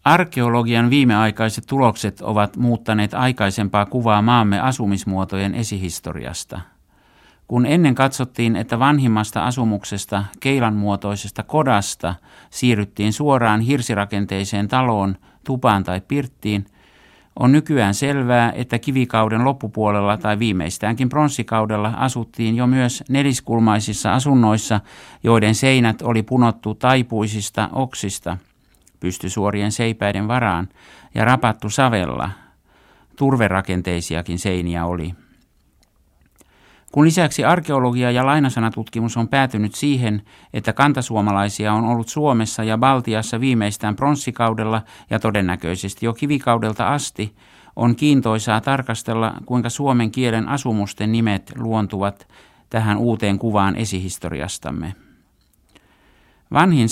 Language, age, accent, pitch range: Finnish, 60-79, native, 105-125 Hz